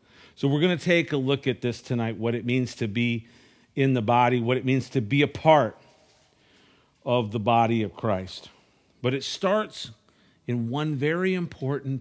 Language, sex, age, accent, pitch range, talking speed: English, male, 50-69, American, 115-155 Hz, 185 wpm